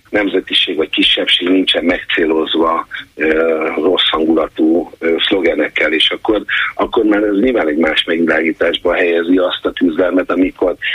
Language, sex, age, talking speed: Hungarian, male, 50-69, 130 wpm